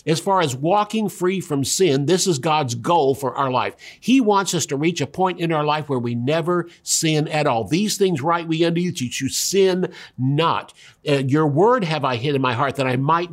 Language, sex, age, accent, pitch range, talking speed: English, male, 50-69, American, 135-175 Hz, 235 wpm